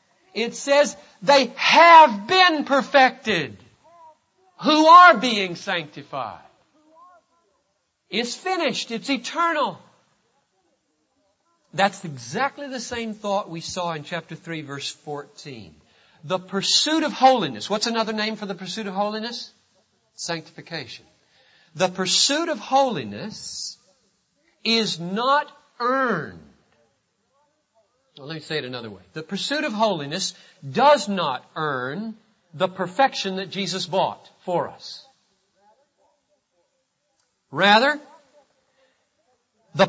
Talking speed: 105 wpm